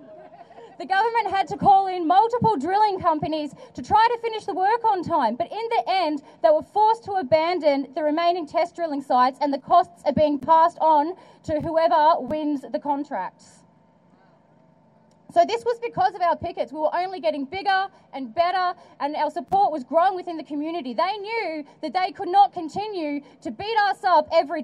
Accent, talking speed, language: Australian, 190 wpm, English